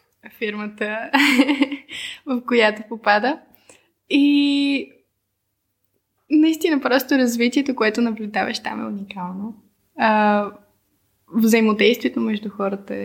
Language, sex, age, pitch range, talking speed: Bulgarian, female, 10-29, 210-260 Hz, 80 wpm